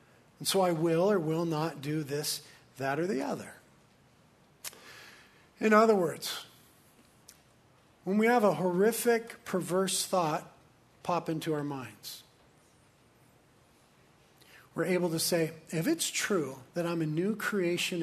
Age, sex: 50-69, male